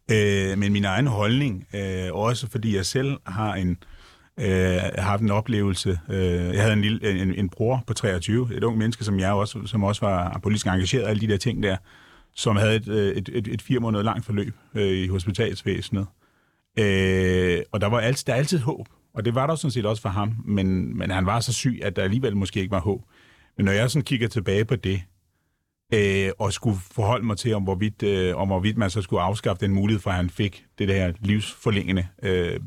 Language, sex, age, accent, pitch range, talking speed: Danish, male, 30-49, native, 95-115 Hz, 210 wpm